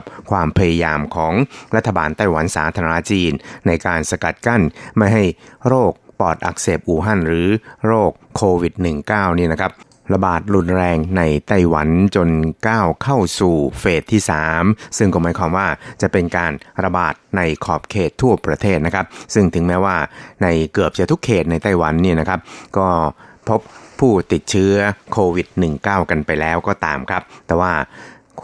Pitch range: 80-100 Hz